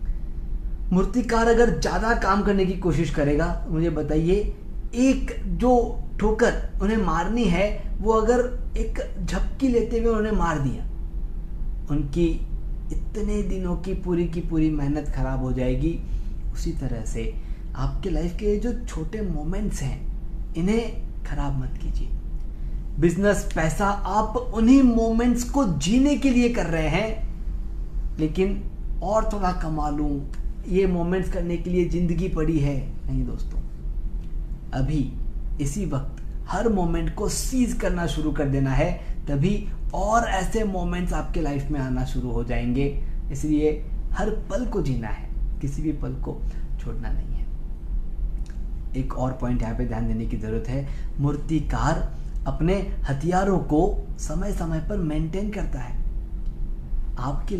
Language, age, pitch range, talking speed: Hindi, 20-39, 135-195 Hz, 140 wpm